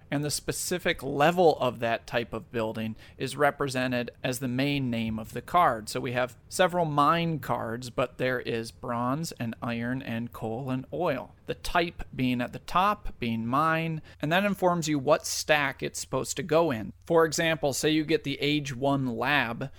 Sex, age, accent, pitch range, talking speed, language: male, 40-59, American, 125-165 Hz, 190 wpm, English